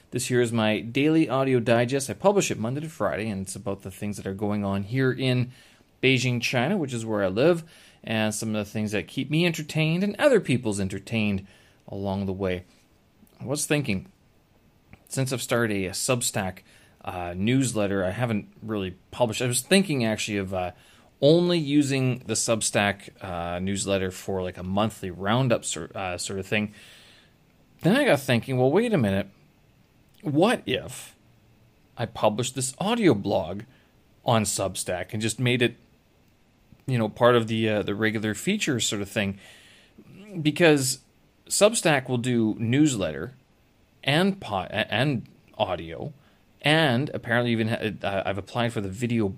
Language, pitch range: English, 100-130 Hz